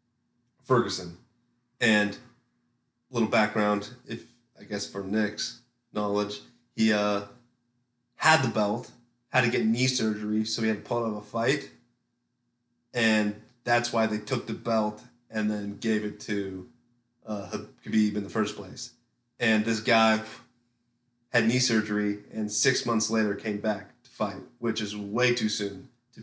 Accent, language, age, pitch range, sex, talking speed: American, English, 30-49, 105-120 Hz, male, 155 wpm